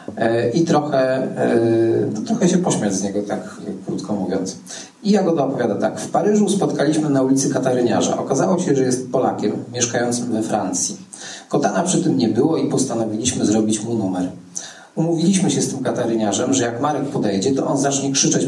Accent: native